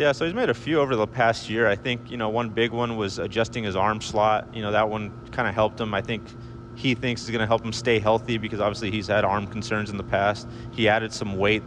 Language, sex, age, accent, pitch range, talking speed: English, male, 30-49, American, 105-120 Hz, 280 wpm